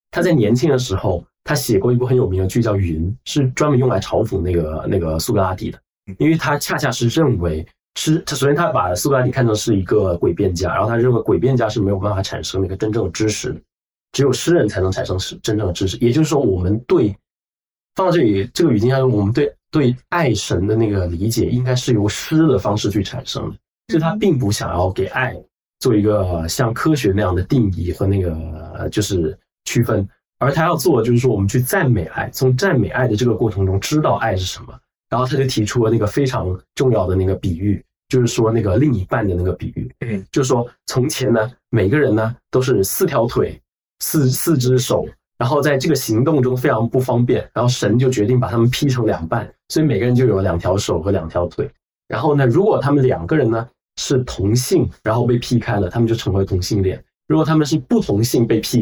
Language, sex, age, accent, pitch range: Chinese, male, 20-39, native, 100-130 Hz